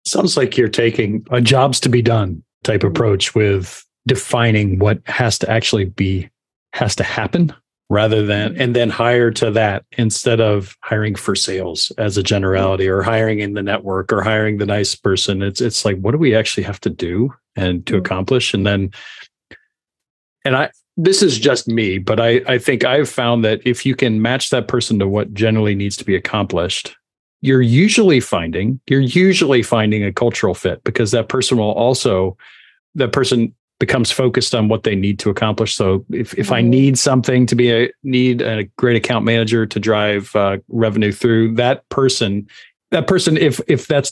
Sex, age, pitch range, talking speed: male, 40-59, 105-125 Hz, 185 wpm